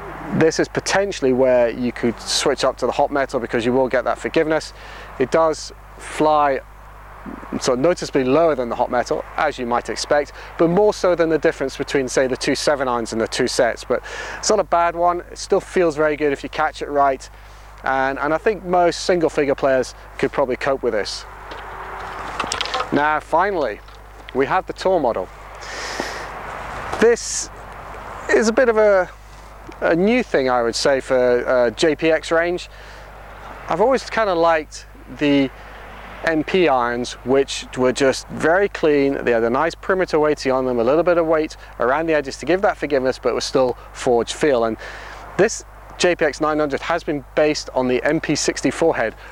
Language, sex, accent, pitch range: English, male, British, 130-165 Hz